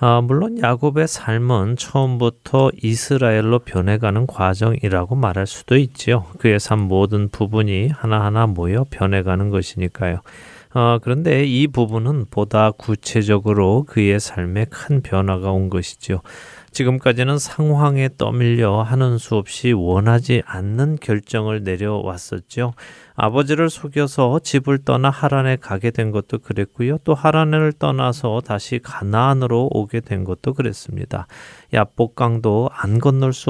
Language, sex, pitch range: Korean, male, 100-135 Hz